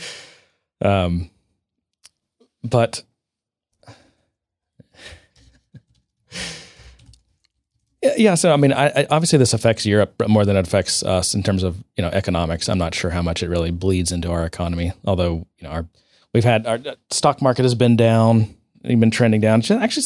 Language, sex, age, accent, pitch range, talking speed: English, male, 30-49, American, 90-115 Hz, 155 wpm